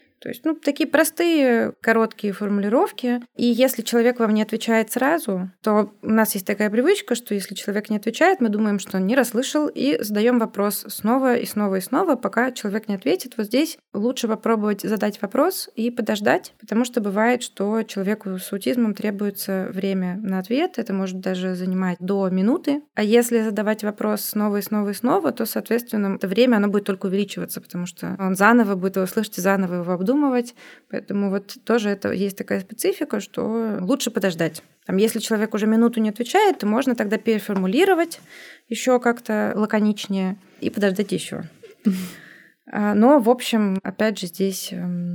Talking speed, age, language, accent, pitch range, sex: 170 wpm, 20-39, Russian, native, 190-235 Hz, female